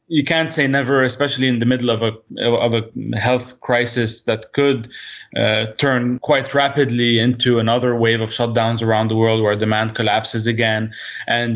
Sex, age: male, 20-39